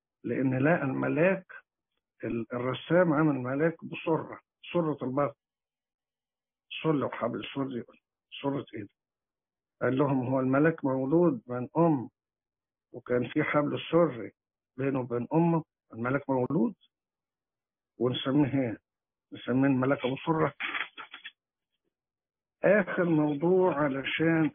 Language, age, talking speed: English, 50-69, 90 wpm